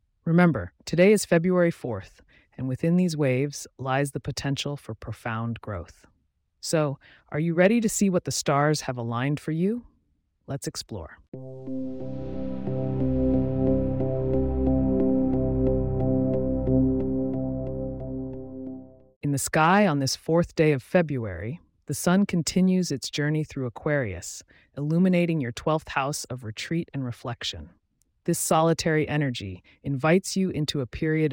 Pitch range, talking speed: 100-155 Hz, 120 wpm